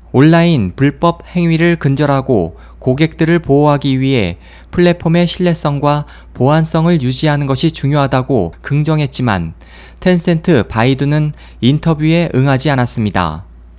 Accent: native